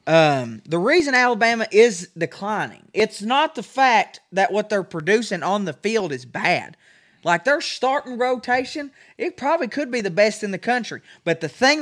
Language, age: English, 20-39